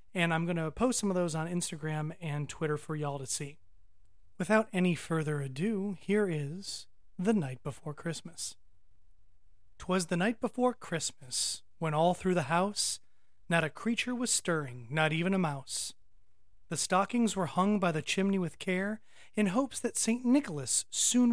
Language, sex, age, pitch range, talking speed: English, male, 30-49, 140-200 Hz, 170 wpm